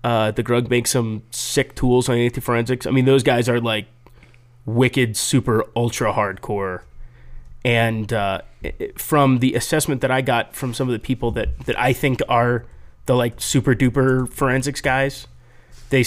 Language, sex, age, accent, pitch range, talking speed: English, male, 30-49, American, 120-140 Hz, 155 wpm